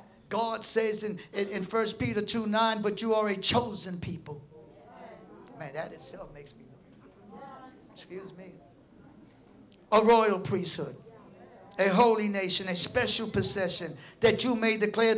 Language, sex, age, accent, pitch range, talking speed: English, male, 50-69, American, 180-225 Hz, 140 wpm